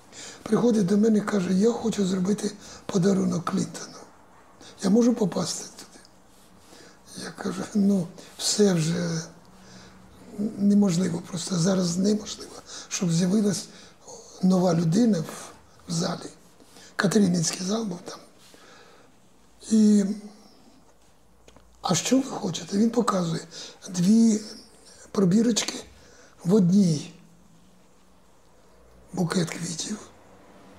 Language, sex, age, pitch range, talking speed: Ukrainian, male, 60-79, 175-210 Hz, 90 wpm